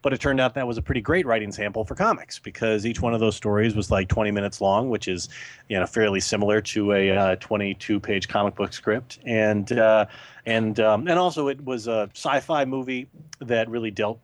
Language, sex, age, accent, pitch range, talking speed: English, male, 30-49, American, 100-120 Hz, 215 wpm